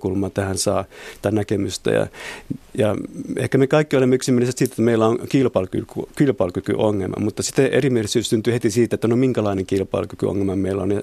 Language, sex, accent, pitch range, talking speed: Finnish, male, native, 100-120 Hz, 165 wpm